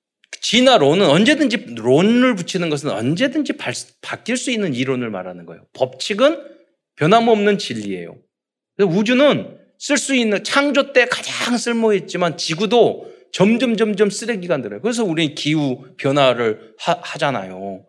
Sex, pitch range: male, 140-225 Hz